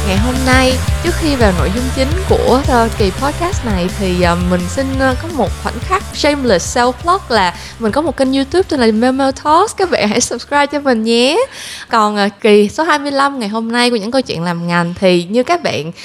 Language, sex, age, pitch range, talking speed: Vietnamese, female, 20-39, 180-245 Hz, 230 wpm